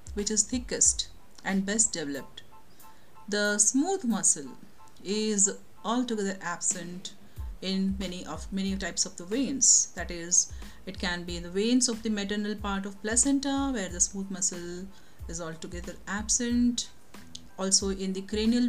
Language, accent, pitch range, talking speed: English, Indian, 185-225 Hz, 145 wpm